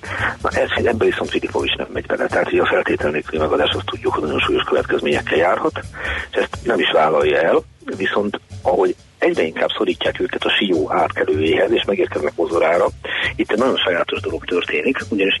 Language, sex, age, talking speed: Hungarian, male, 50-69, 180 wpm